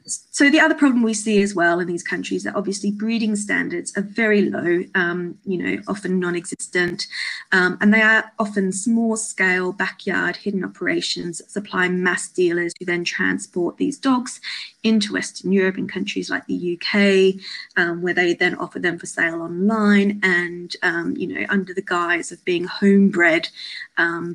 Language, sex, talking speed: English, female, 175 wpm